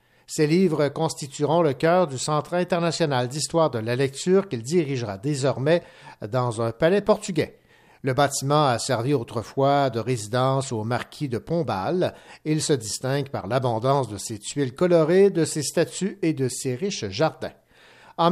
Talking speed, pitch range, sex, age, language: 155 wpm, 120-160 Hz, male, 60-79, French